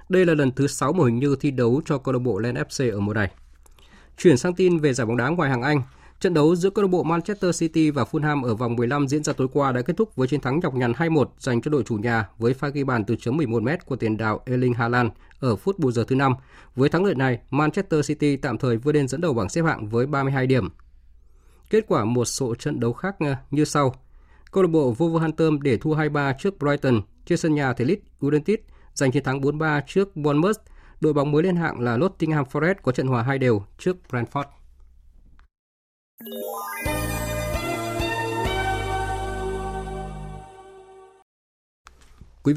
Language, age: Vietnamese, 20-39